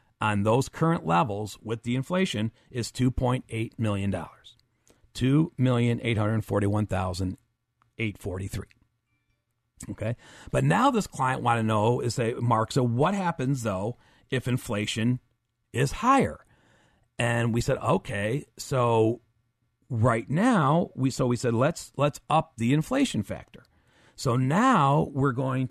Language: English